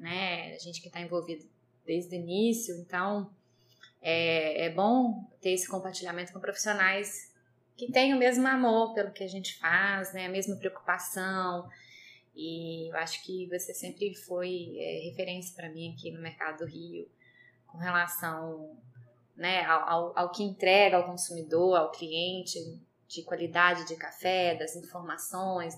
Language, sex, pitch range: Portuguese, female, 165-200 Hz